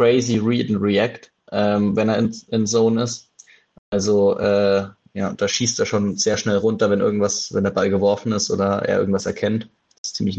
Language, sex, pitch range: German, male, 100-115 Hz